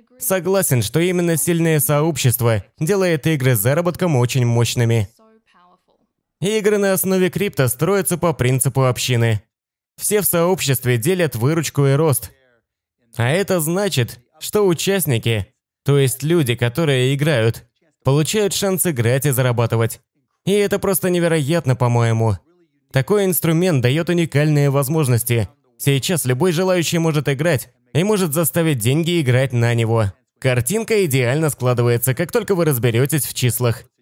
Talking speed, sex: 125 wpm, male